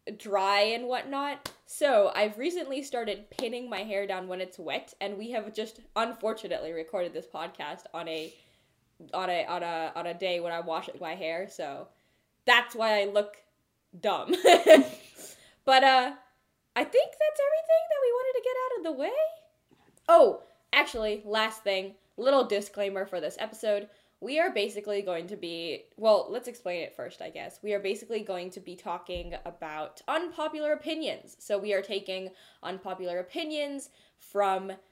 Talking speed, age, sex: 170 wpm, 10-29, female